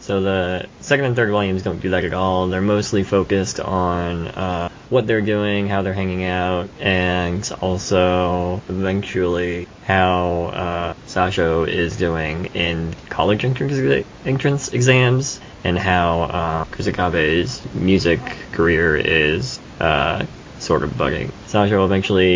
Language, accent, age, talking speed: English, American, 20-39, 130 wpm